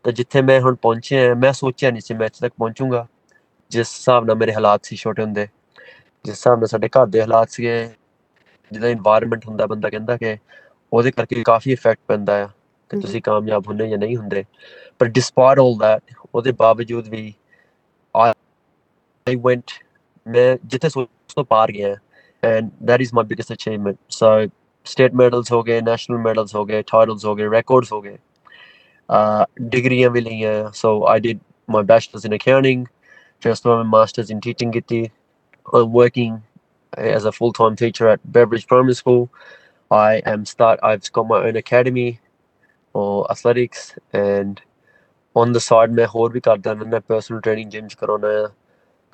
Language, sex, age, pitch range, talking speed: Punjabi, male, 20-39, 110-125 Hz, 160 wpm